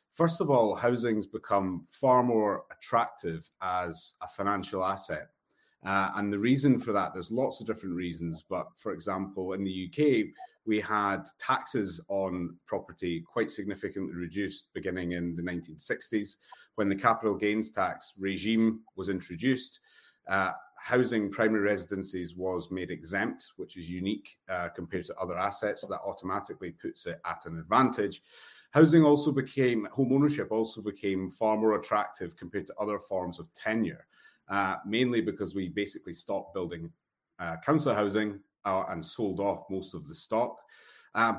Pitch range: 90-110 Hz